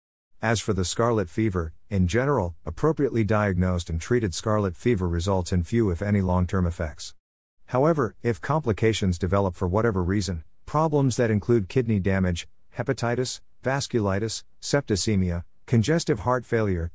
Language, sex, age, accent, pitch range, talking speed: English, male, 50-69, American, 90-115 Hz, 135 wpm